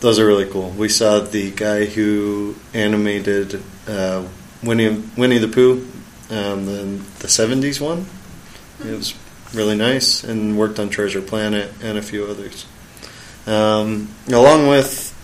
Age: 30-49